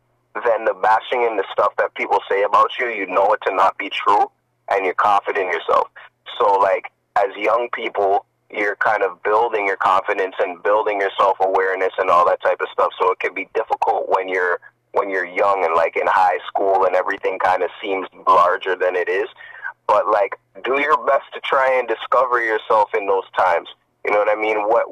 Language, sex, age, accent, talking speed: English, male, 30-49, American, 210 wpm